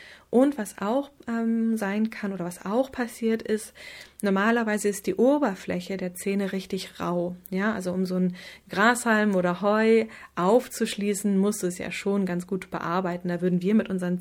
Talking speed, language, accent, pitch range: 170 wpm, German, German, 180-220 Hz